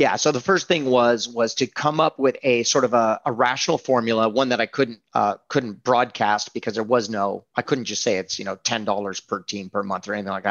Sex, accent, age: male, American, 30-49